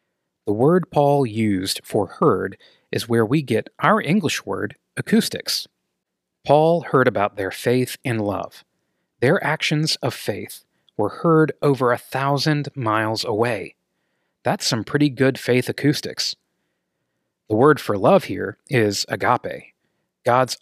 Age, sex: 30-49, male